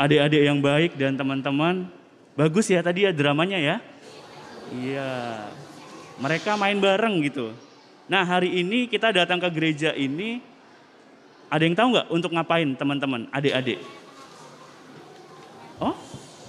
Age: 20-39